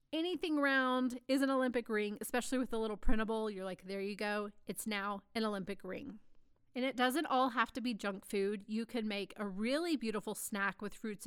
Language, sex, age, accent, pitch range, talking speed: English, female, 30-49, American, 205-255 Hz, 210 wpm